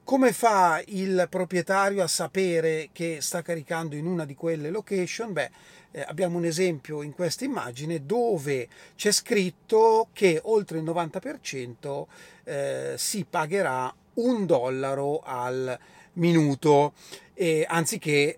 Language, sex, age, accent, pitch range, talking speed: Italian, male, 30-49, native, 140-180 Hz, 115 wpm